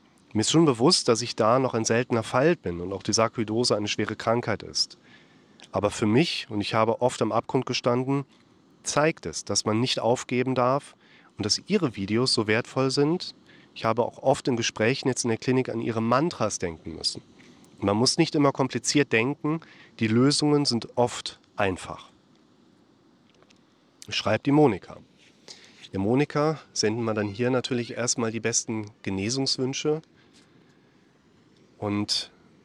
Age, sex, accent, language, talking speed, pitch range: 40-59, male, German, German, 155 wpm, 110-130 Hz